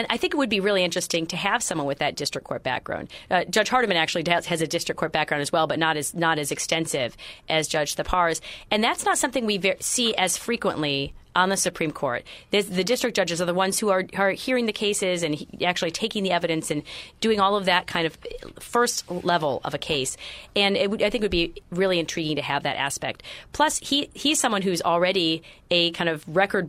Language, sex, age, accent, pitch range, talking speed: English, female, 30-49, American, 160-195 Hz, 230 wpm